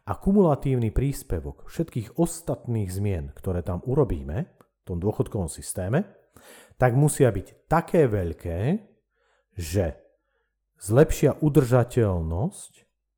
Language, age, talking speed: Slovak, 40-59, 95 wpm